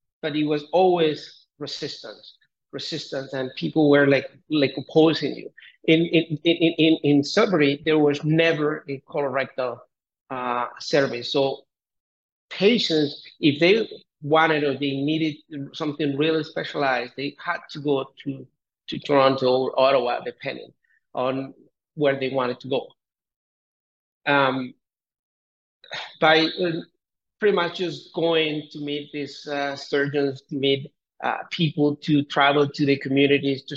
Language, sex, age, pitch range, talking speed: English, male, 50-69, 135-155 Hz, 135 wpm